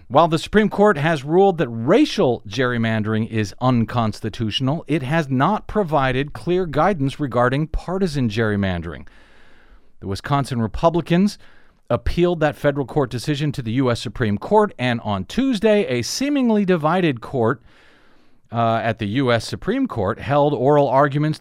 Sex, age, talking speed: male, 40-59, 135 wpm